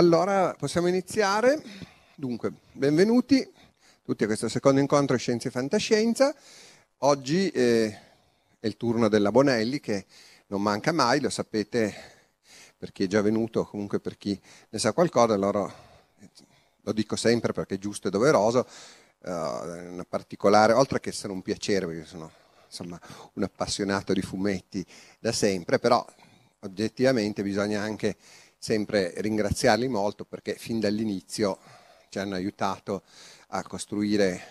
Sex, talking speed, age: male, 130 wpm, 40-59